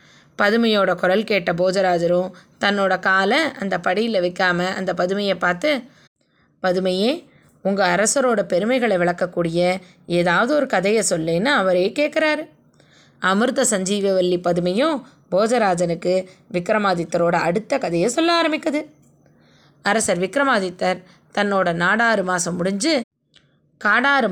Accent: native